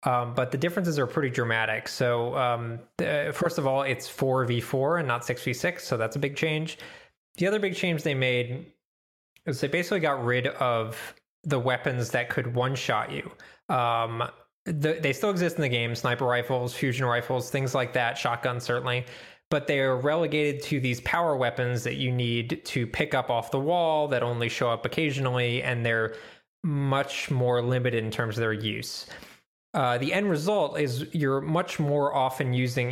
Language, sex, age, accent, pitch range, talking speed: English, male, 20-39, American, 120-145 Hz, 180 wpm